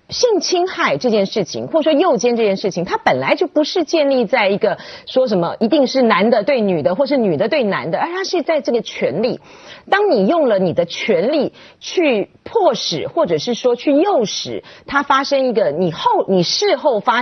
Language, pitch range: Chinese, 205-335 Hz